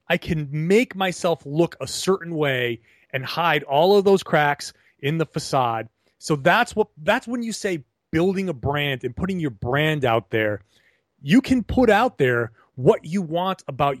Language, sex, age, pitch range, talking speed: English, male, 30-49, 140-205 Hz, 180 wpm